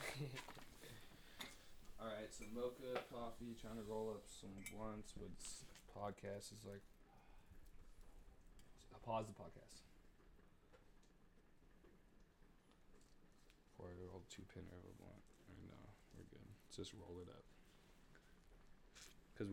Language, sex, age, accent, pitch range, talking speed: English, male, 20-39, American, 95-115 Hz, 120 wpm